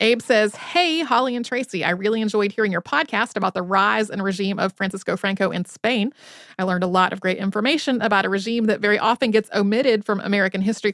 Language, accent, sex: English, American, female